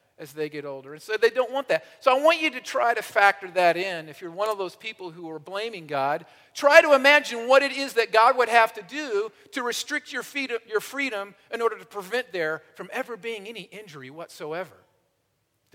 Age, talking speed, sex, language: 50-69, 220 wpm, male, English